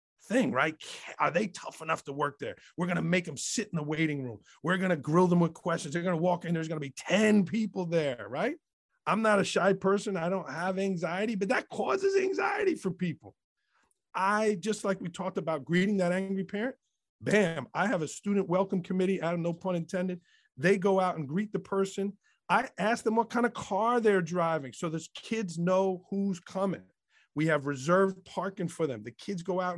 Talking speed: 220 wpm